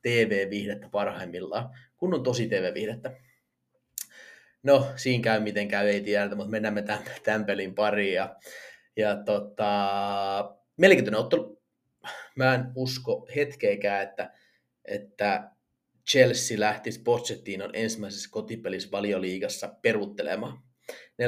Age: 30-49